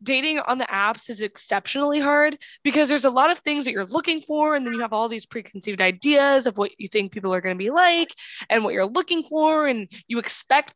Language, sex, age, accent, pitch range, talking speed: English, female, 20-39, American, 220-285 Hz, 240 wpm